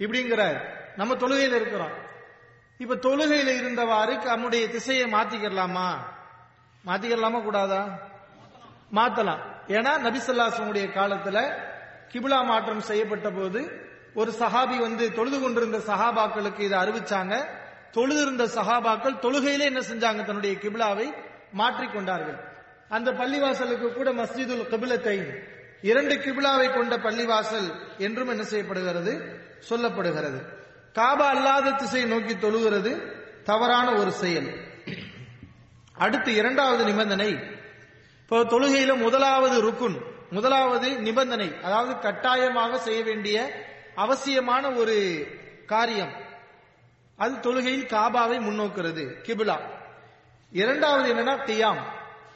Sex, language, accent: male, English, Indian